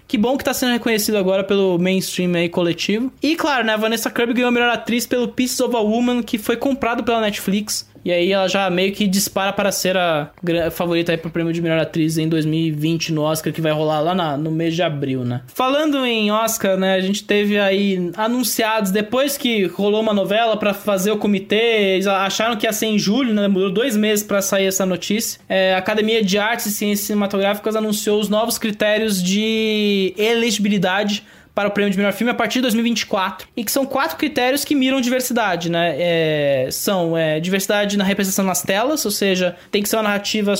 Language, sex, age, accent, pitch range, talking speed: English, male, 20-39, Brazilian, 180-220 Hz, 210 wpm